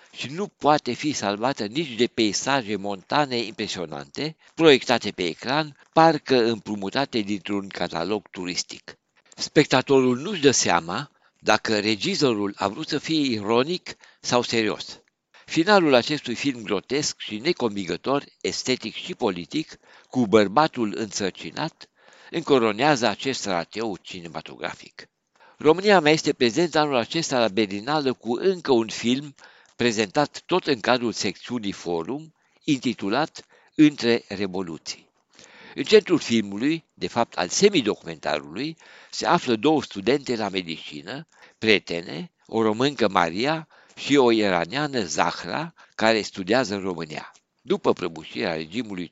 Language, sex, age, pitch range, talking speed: Romanian, male, 60-79, 100-145 Hz, 115 wpm